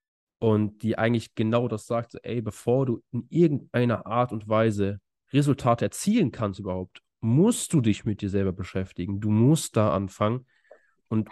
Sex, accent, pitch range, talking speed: male, German, 105-125 Hz, 165 wpm